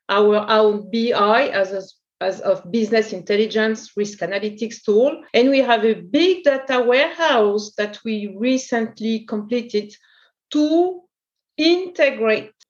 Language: English